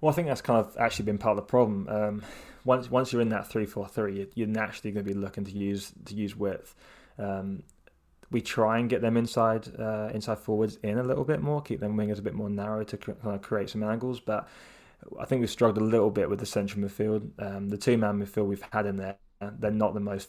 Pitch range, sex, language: 100-110 Hz, male, English